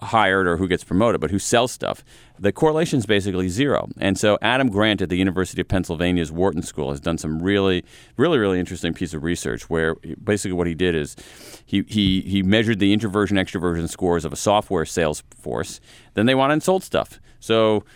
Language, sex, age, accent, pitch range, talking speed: English, male, 40-59, American, 95-130 Hz, 200 wpm